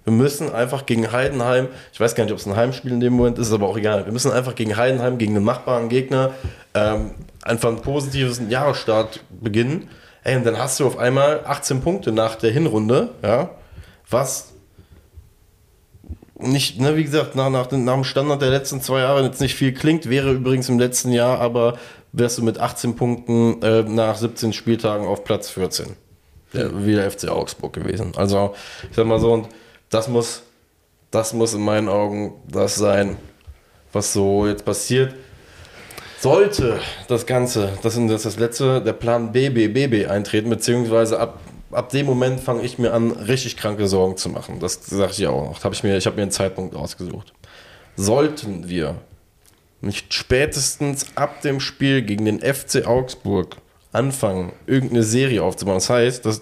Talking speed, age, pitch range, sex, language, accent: 170 wpm, 20-39, 100-130 Hz, male, German, German